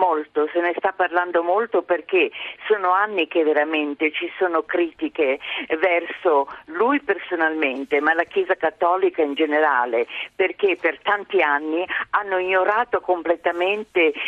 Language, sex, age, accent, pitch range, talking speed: Italian, female, 50-69, native, 160-215 Hz, 125 wpm